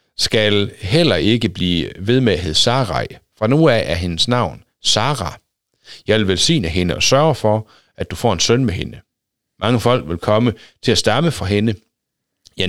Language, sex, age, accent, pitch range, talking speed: Danish, male, 60-79, native, 95-125 Hz, 190 wpm